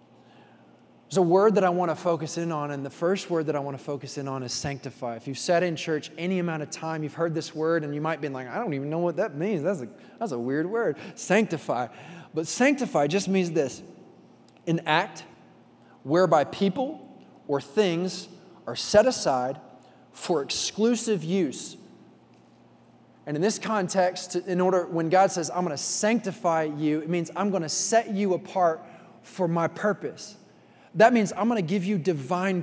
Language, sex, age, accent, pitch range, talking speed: English, male, 20-39, American, 155-190 Hz, 190 wpm